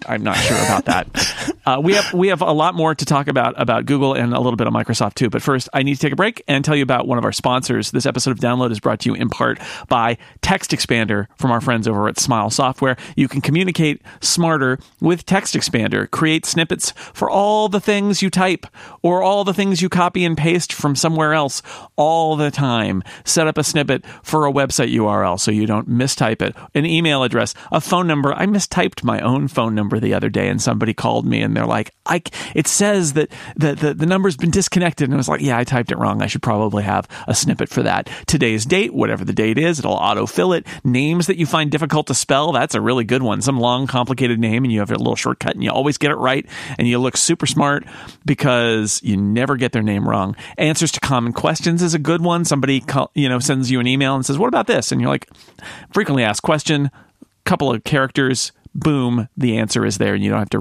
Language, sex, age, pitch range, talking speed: English, male, 40-59, 120-160 Hz, 240 wpm